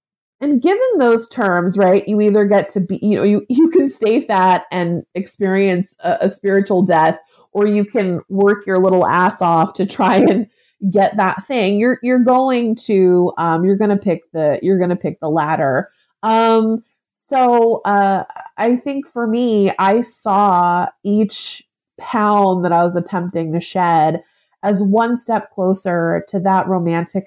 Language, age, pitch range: English, 30-49, 180-220 Hz